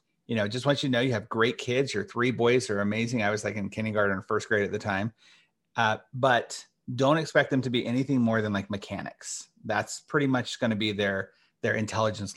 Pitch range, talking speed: 110-145 Hz, 235 wpm